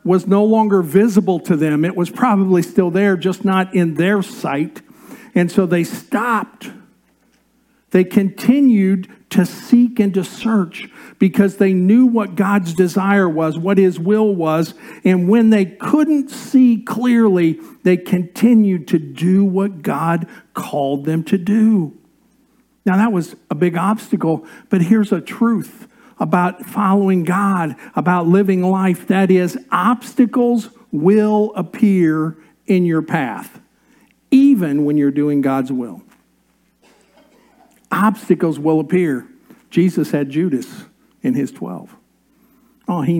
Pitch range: 180-225 Hz